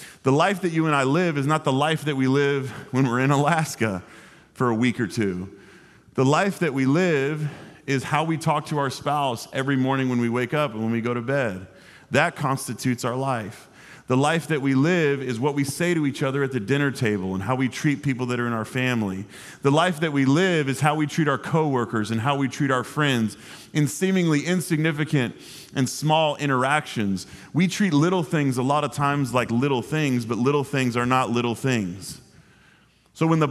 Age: 30-49